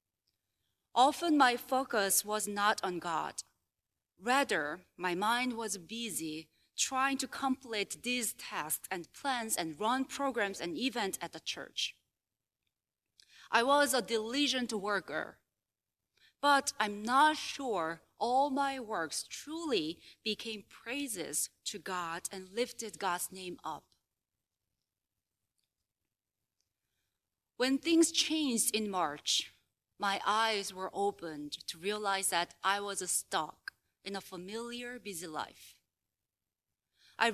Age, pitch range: 30-49, 180-260 Hz